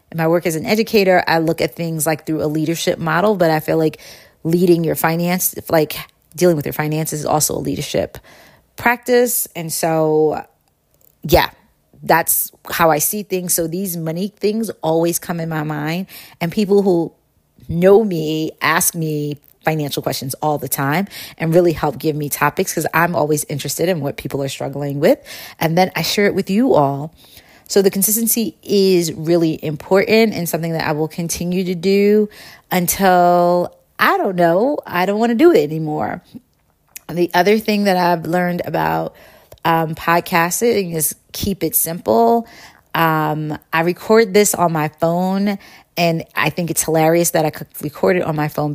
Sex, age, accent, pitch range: female, 30-49, American, 155-185 Hz